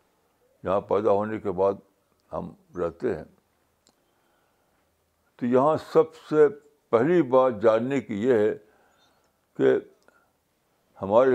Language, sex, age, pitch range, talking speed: Urdu, male, 60-79, 100-145 Hz, 105 wpm